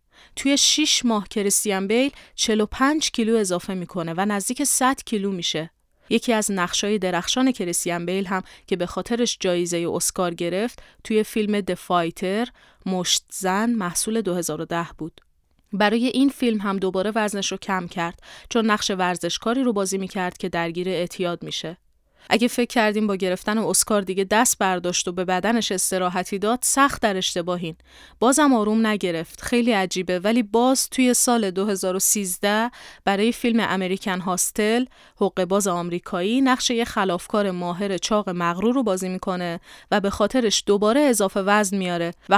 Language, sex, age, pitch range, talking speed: Persian, female, 30-49, 180-230 Hz, 150 wpm